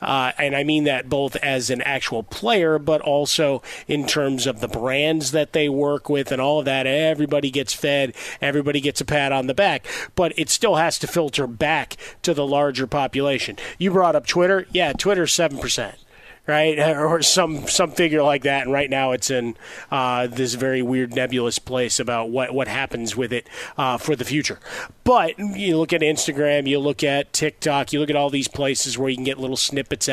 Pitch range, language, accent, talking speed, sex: 135-155 Hz, English, American, 205 wpm, male